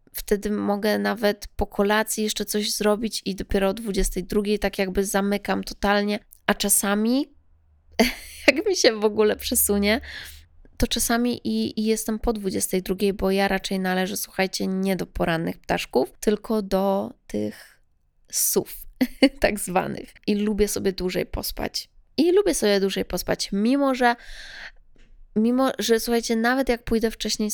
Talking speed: 140 wpm